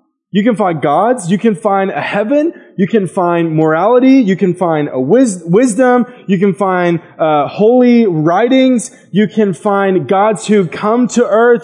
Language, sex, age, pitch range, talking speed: English, male, 20-39, 210-255 Hz, 170 wpm